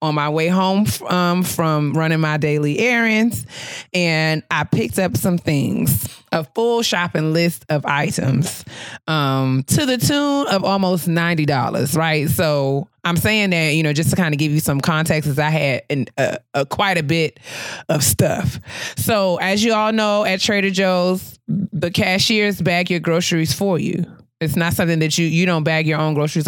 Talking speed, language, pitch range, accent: 185 wpm, English, 150-190 Hz, American